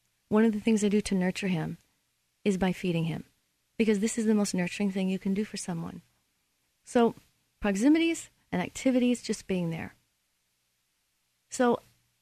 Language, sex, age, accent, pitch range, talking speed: English, female, 40-59, American, 180-220 Hz, 160 wpm